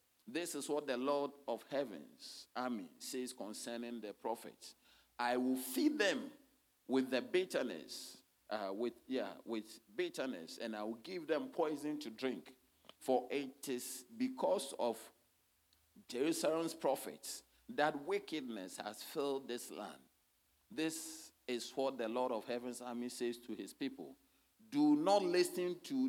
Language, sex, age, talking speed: English, male, 50-69, 140 wpm